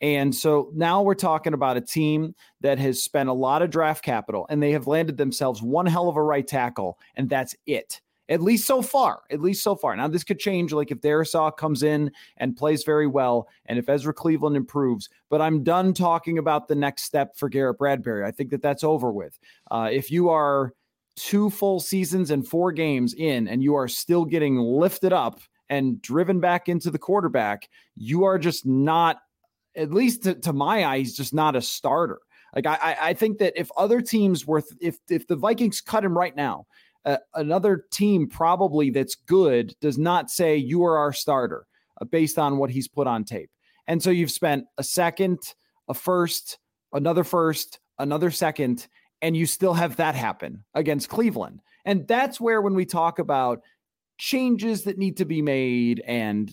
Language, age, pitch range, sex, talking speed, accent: English, 30-49, 140-180 Hz, male, 195 wpm, American